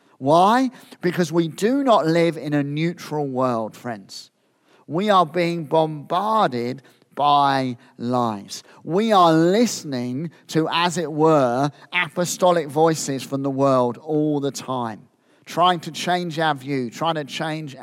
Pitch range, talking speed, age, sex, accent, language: 125-165 Hz, 135 wpm, 50-69, male, British, English